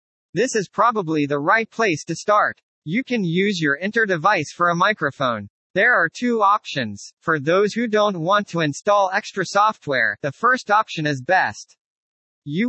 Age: 40-59